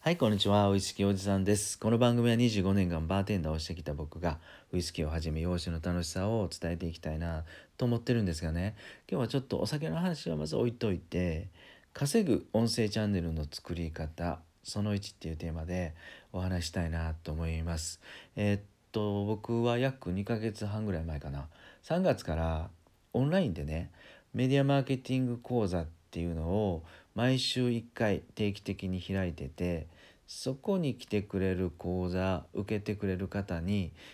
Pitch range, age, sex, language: 85-110 Hz, 40-59, male, Japanese